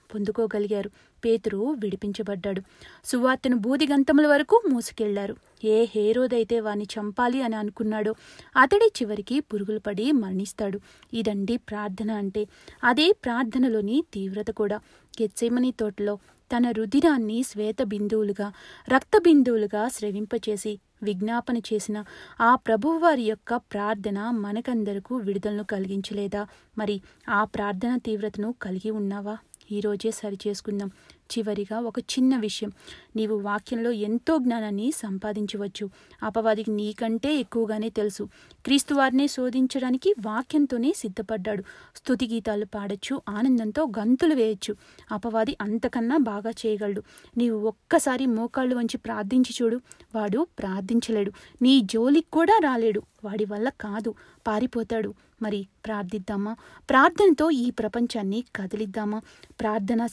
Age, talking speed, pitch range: 30-49, 100 wpm, 210-250 Hz